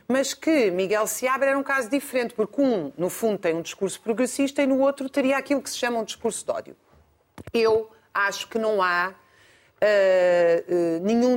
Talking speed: 180 wpm